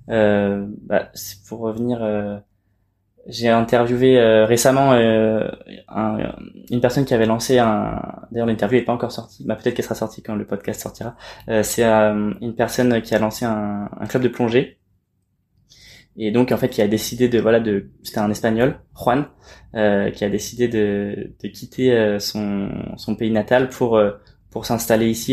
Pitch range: 105-120 Hz